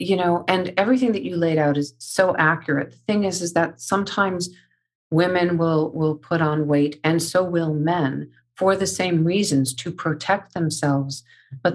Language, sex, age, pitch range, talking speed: English, female, 50-69, 140-165 Hz, 180 wpm